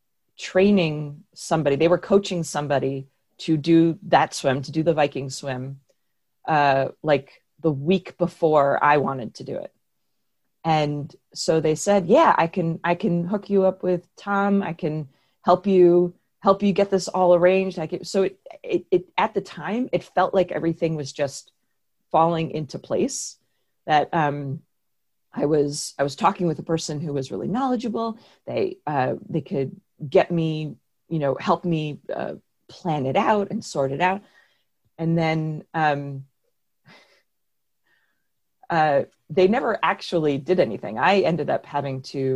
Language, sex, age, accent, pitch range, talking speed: English, female, 30-49, American, 145-185 Hz, 155 wpm